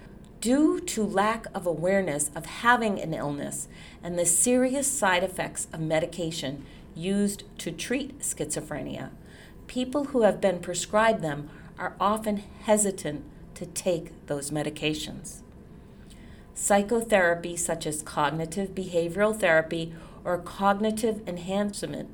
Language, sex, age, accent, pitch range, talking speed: English, female, 40-59, American, 160-205 Hz, 115 wpm